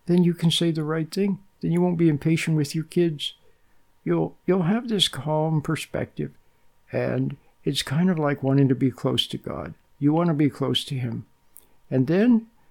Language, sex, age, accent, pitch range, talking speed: English, male, 60-79, American, 120-155 Hz, 195 wpm